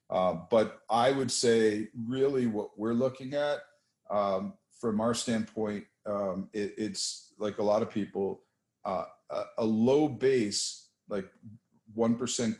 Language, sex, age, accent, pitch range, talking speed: English, male, 50-69, American, 100-120 Hz, 130 wpm